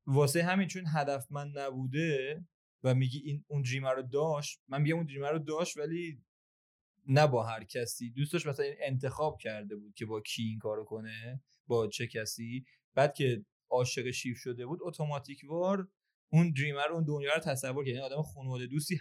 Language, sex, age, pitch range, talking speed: Persian, male, 30-49, 120-150 Hz, 185 wpm